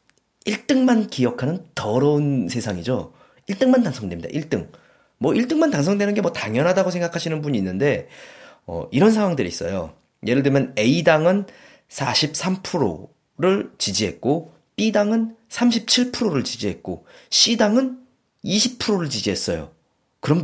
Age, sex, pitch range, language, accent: 30-49, male, 130-215 Hz, Korean, native